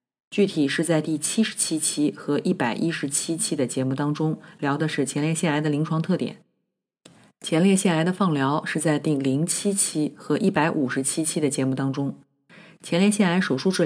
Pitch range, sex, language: 135-175 Hz, female, Chinese